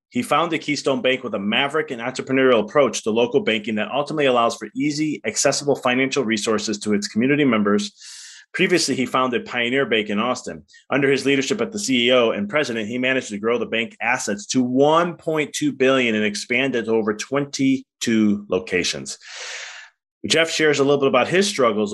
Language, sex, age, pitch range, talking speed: English, male, 30-49, 115-145 Hz, 175 wpm